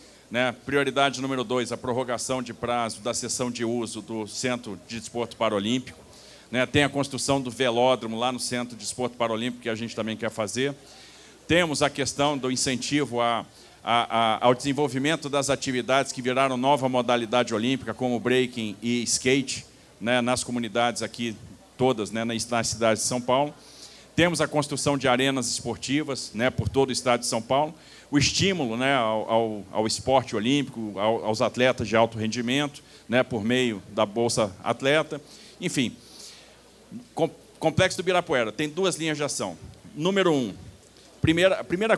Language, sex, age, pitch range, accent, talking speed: Portuguese, male, 40-59, 115-145 Hz, Brazilian, 165 wpm